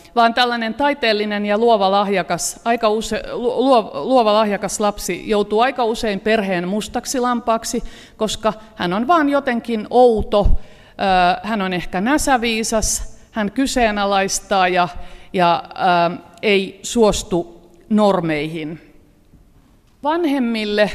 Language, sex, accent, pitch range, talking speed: Finnish, female, native, 175-230 Hz, 105 wpm